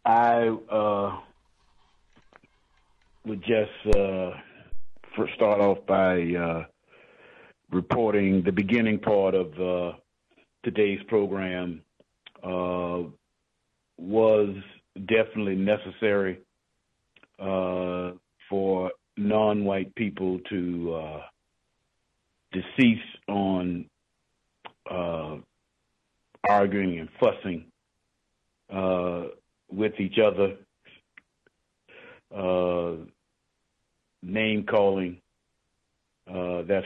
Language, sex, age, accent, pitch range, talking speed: English, male, 50-69, American, 90-105 Hz, 70 wpm